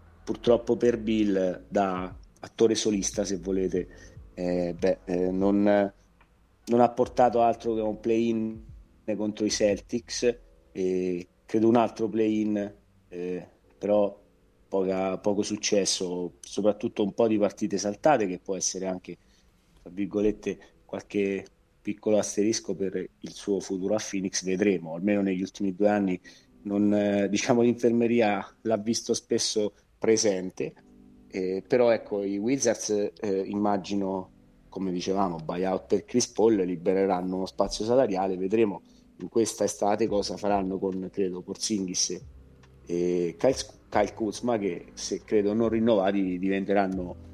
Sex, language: male, Italian